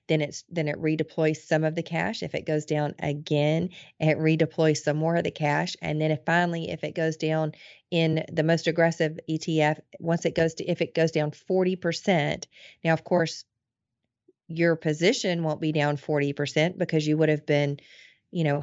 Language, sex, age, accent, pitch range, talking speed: English, female, 40-59, American, 155-170 Hz, 195 wpm